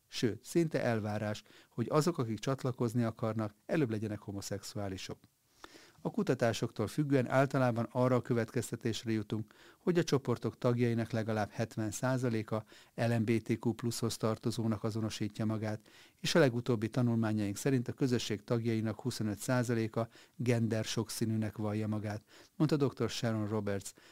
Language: Hungarian